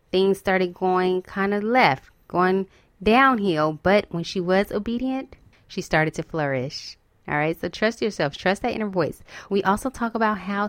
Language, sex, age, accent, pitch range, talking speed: English, female, 20-39, American, 160-200 Hz, 170 wpm